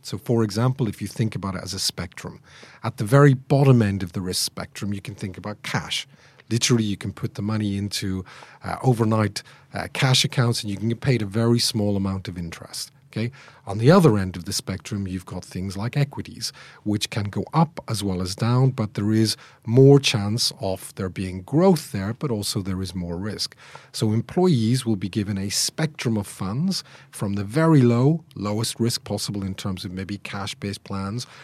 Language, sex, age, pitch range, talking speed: English, male, 40-59, 100-130 Hz, 200 wpm